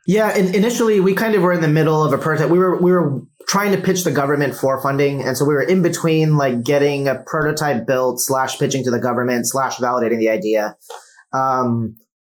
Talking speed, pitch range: 215 wpm, 125-150 Hz